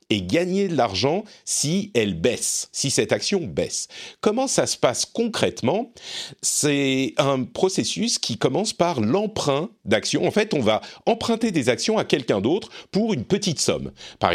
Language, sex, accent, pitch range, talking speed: French, male, French, 120-195 Hz, 165 wpm